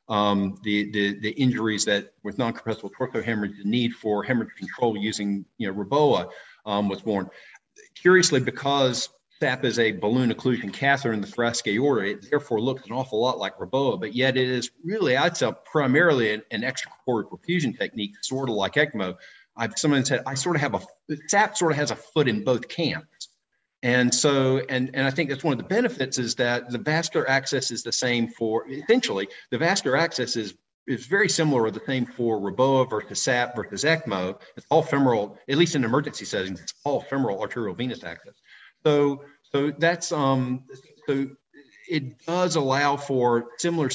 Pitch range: 110-140 Hz